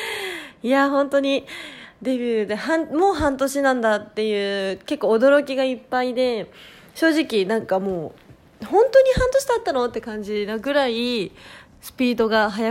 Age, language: 20-39, Japanese